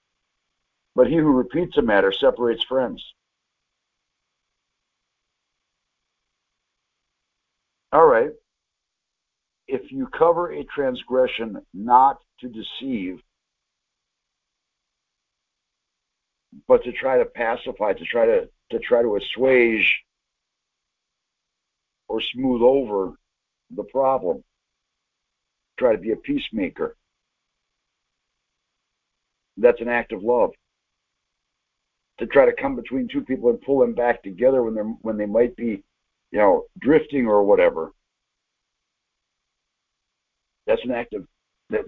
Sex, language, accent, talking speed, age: male, English, American, 105 wpm, 60-79